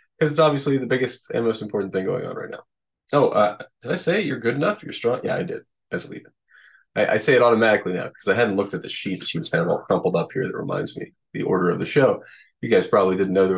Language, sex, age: English, male, 20-39